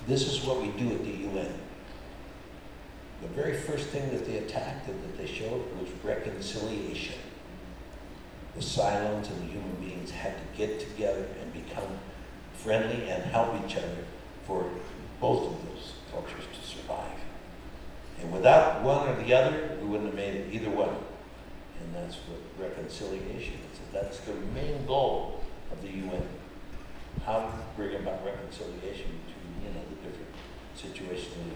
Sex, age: male, 60-79